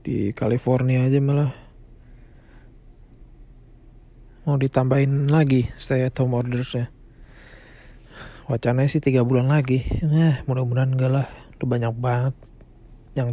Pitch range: 120-140 Hz